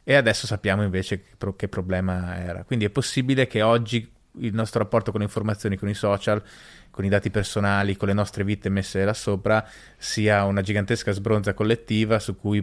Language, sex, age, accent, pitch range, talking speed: Italian, male, 20-39, native, 100-115 Hz, 185 wpm